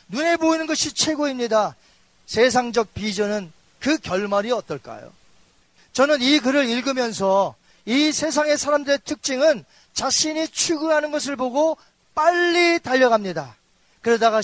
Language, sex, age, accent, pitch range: Korean, male, 40-59, native, 205-280 Hz